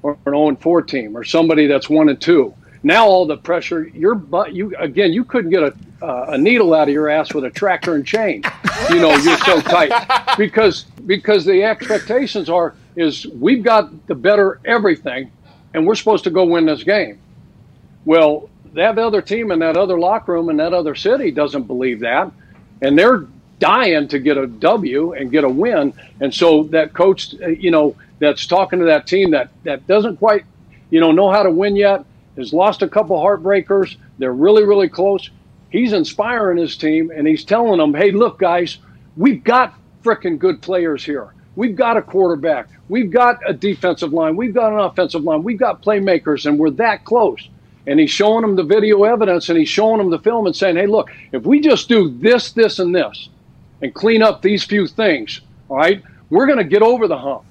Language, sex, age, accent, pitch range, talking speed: English, male, 60-79, American, 160-220 Hz, 200 wpm